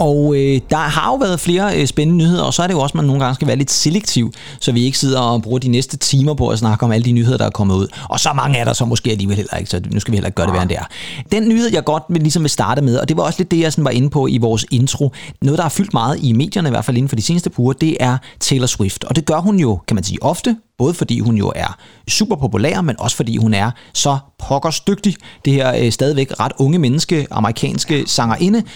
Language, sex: Danish, male